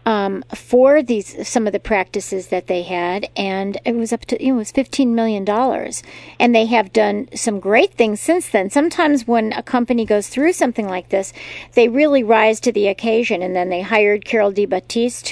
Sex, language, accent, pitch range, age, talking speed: female, English, American, 200-240 Hz, 50-69, 200 wpm